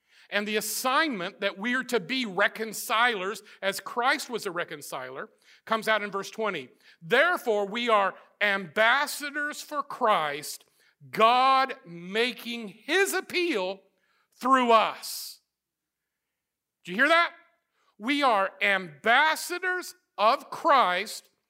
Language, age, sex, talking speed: English, 50-69, male, 110 wpm